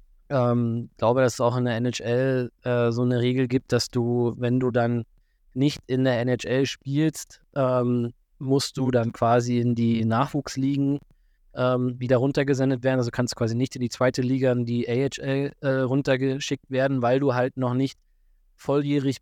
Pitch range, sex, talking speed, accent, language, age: 115-130 Hz, male, 180 wpm, German, German, 20-39